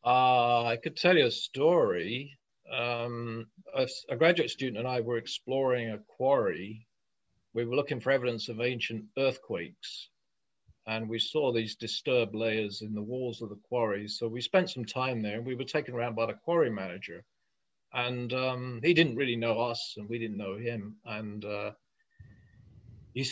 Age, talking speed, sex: 50-69, 175 wpm, male